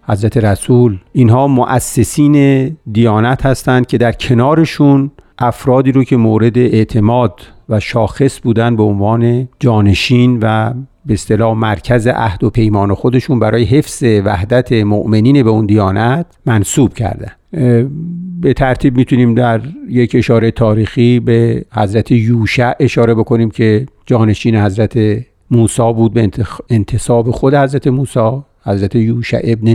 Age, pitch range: 50-69, 110-130 Hz